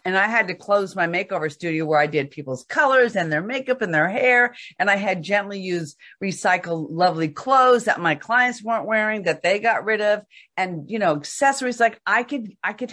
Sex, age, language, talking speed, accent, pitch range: female, 50-69, English, 215 wpm, American, 175-230 Hz